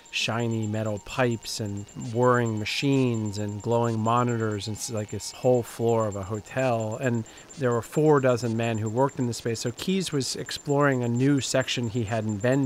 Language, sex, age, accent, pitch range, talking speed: English, male, 40-59, American, 115-140 Hz, 180 wpm